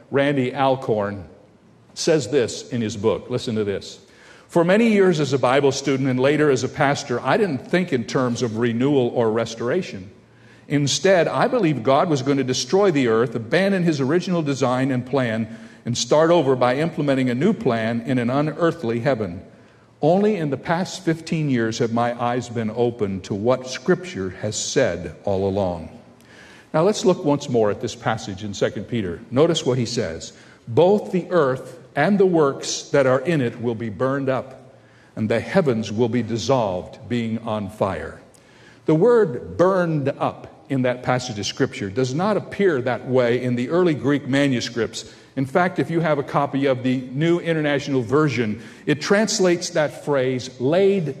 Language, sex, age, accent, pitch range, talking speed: English, male, 50-69, American, 120-155 Hz, 175 wpm